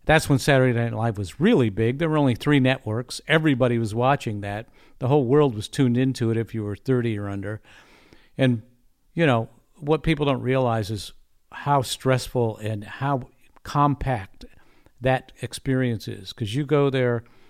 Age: 50-69